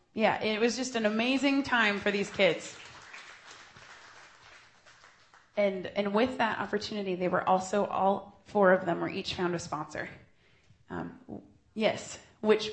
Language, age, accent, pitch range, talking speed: English, 20-39, American, 185-220 Hz, 140 wpm